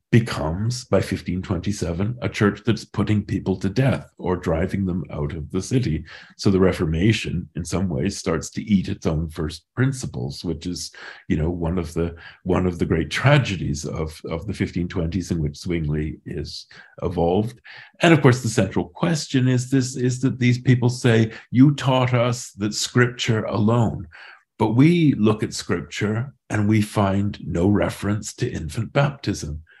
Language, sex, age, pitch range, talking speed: English, male, 50-69, 90-125 Hz, 165 wpm